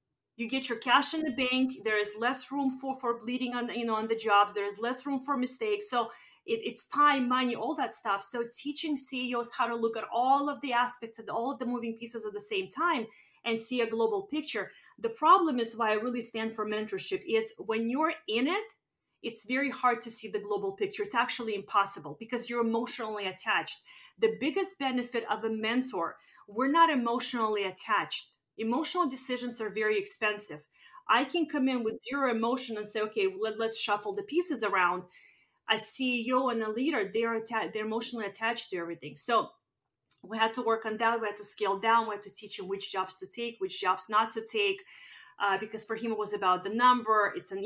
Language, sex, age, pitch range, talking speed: English, female, 30-49, 215-265 Hz, 210 wpm